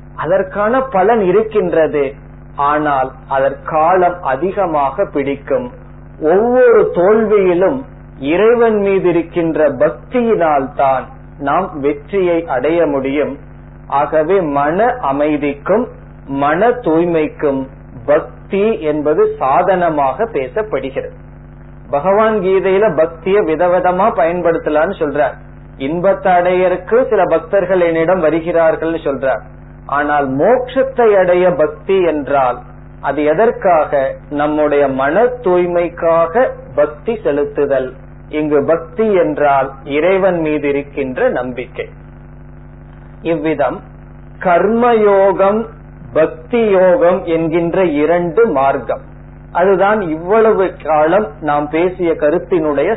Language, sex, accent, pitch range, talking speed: Tamil, male, native, 145-195 Hz, 80 wpm